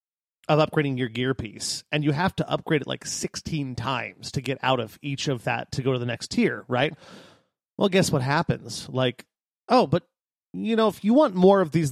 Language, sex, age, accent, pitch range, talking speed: English, male, 30-49, American, 135-195 Hz, 215 wpm